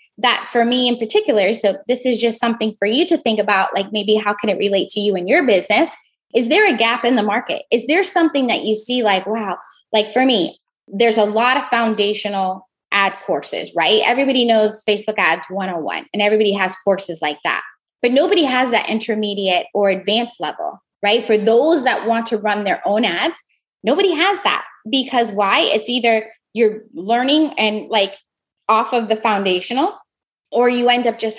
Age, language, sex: 10-29, English, female